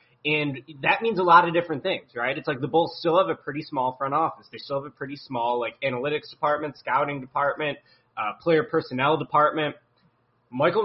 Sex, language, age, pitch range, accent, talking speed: male, English, 20-39, 125-165 Hz, American, 200 wpm